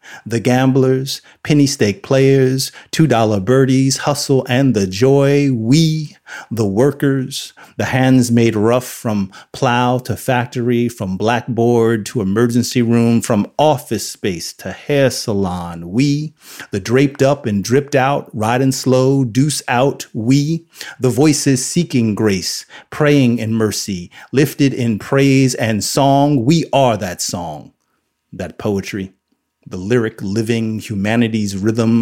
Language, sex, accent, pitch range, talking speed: English, male, American, 105-130 Hz, 125 wpm